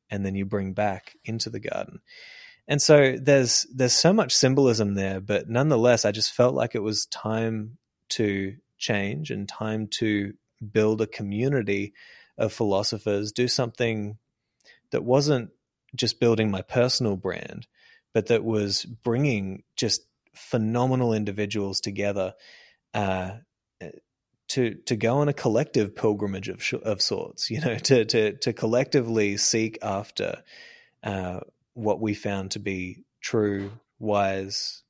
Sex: male